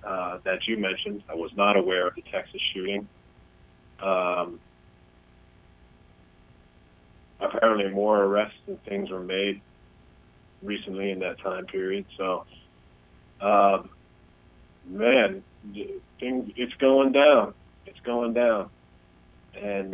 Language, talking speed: English, 110 wpm